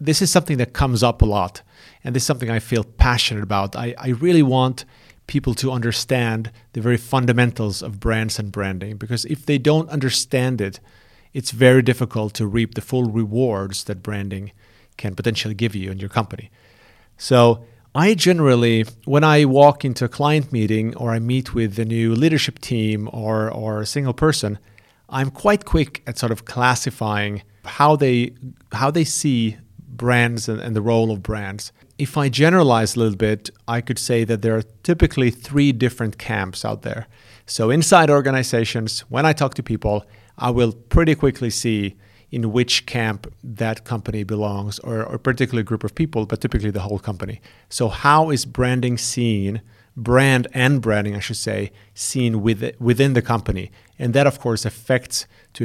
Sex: male